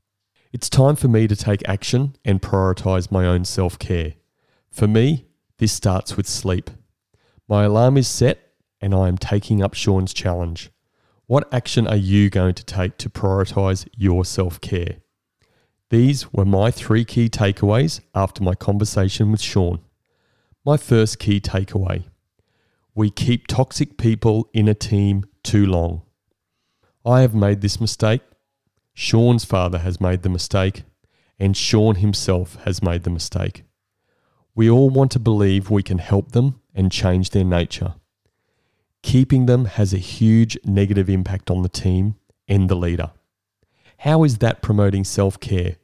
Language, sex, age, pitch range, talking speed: English, male, 30-49, 95-115 Hz, 150 wpm